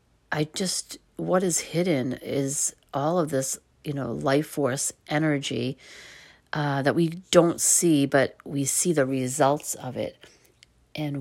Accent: American